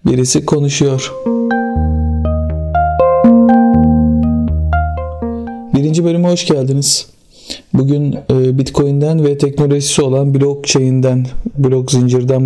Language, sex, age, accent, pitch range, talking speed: Turkish, male, 50-69, native, 125-150 Hz, 70 wpm